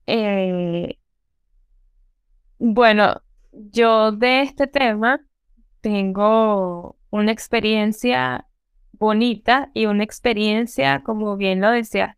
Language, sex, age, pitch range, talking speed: Spanish, female, 10-29, 200-240 Hz, 85 wpm